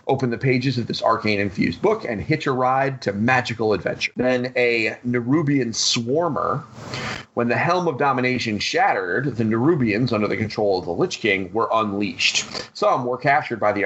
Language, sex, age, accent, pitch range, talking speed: English, male, 30-49, American, 110-130 Hz, 175 wpm